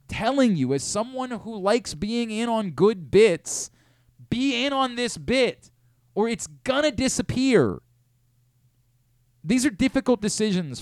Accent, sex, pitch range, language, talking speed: American, male, 120-200 Hz, English, 135 wpm